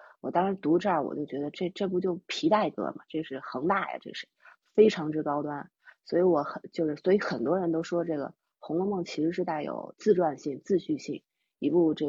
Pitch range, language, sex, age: 150-185 Hz, Chinese, female, 30-49